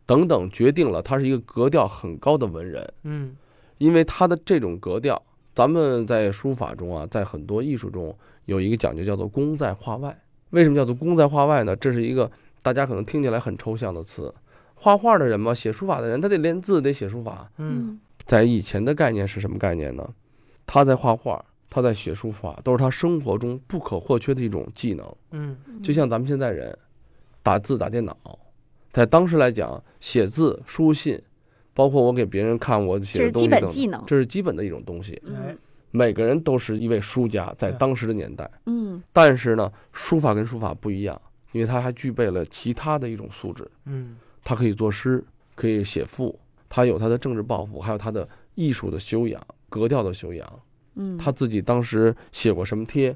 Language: Chinese